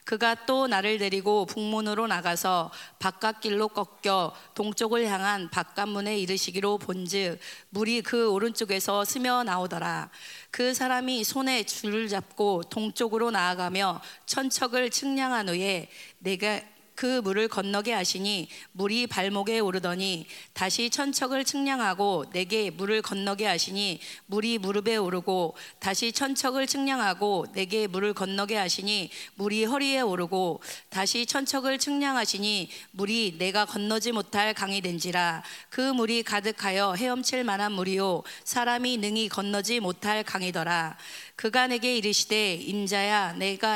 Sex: female